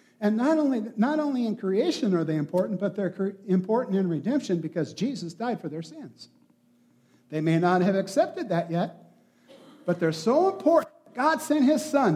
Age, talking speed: 60-79, 175 wpm